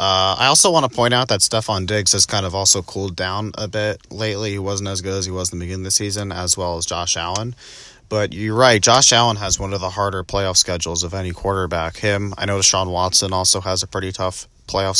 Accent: American